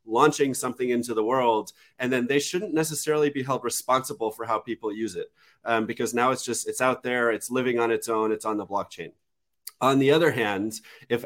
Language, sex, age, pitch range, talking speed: English, male, 30-49, 110-135 Hz, 215 wpm